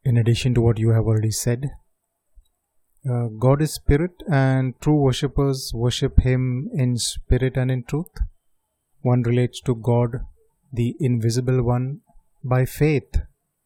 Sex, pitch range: male, 120-140 Hz